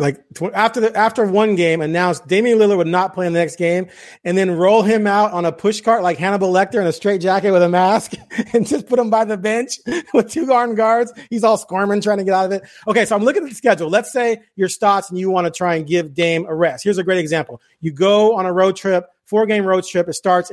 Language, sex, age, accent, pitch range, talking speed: English, male, 30-49, American, 165-195 Hz, 270 wpm